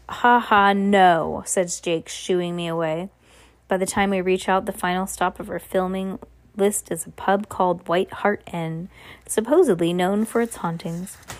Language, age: English, 20-39